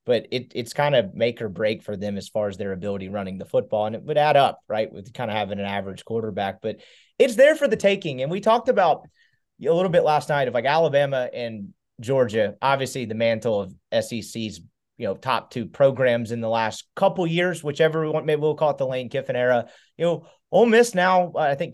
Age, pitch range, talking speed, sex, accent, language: 30-49, 115-155 Hz, 230 wpm, male, American, English